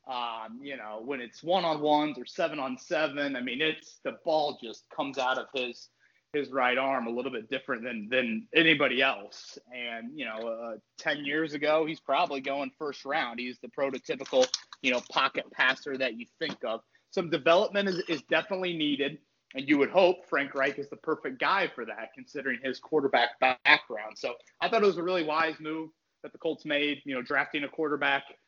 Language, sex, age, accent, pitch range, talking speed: English, male, 30-49, American, 130-160 Hz, 195 wpm